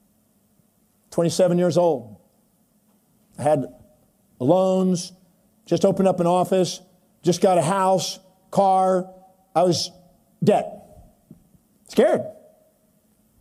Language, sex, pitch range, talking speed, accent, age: English, male, 175-215 Hz, 90 wpm, American, 50-69